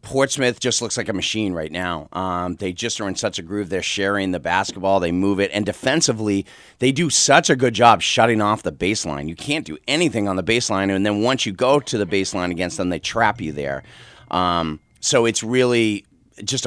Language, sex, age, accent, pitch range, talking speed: English, male, 30-49, American, 95-125 Hz, 220 wpm